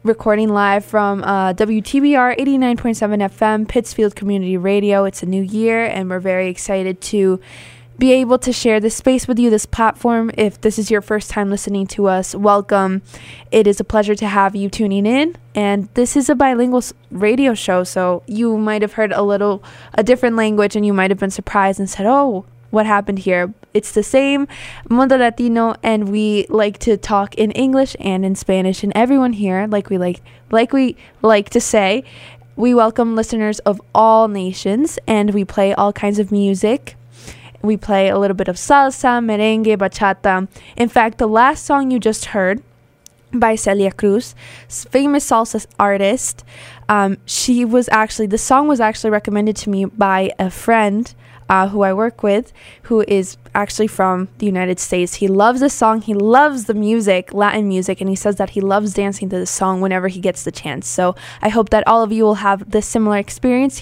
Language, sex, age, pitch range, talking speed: English, female, 20-39, 195-225 Hz, 190 wpm